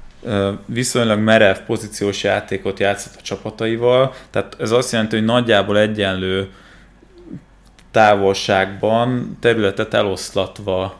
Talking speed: 95 wpm